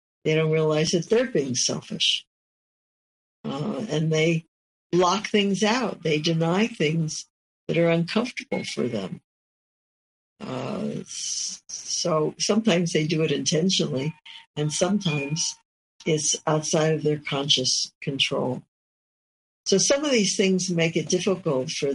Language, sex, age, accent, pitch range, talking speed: English, female, 60-79, American, 155-200 Hz, 125 wpm